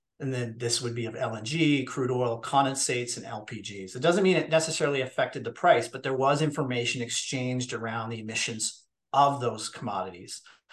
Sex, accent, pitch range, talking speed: male, American, 120-150 Hz, 175 wpm